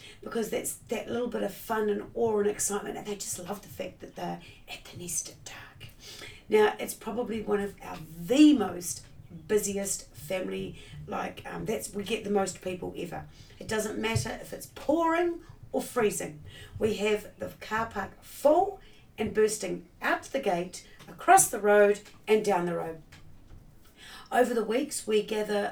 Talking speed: 175 wpm